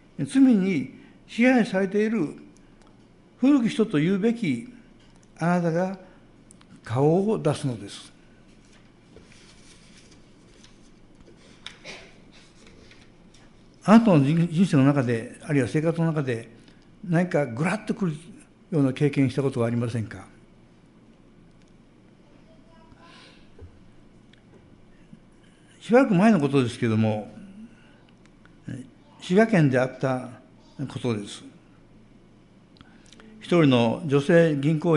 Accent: native